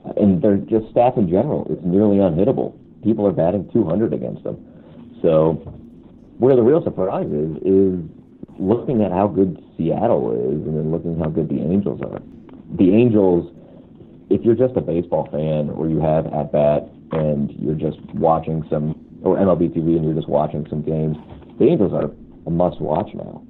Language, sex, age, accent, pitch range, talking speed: English, male, 50-69, American, 80-105 Hz, 180 wpm